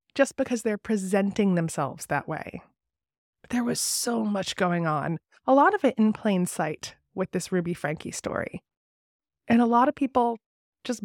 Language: English